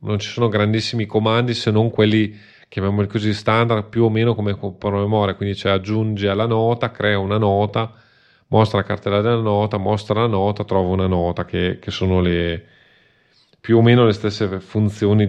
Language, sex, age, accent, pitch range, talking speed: Italian, male, 30-49, native, 100-115 Hz, 180 wpm